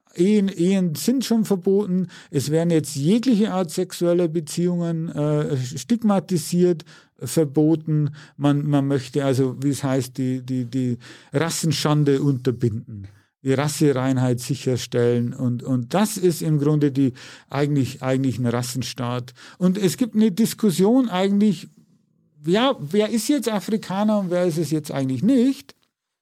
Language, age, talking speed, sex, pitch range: German, 50-69, 135 wpm, male, 150-200 Hz